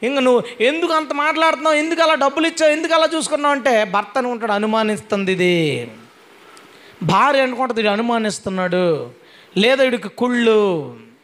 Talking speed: 125 wpm